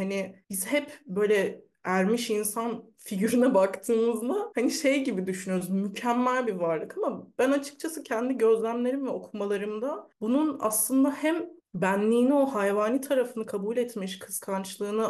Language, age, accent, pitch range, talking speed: Turkish, 30-49, native, 200-255 Hz, 125 wpm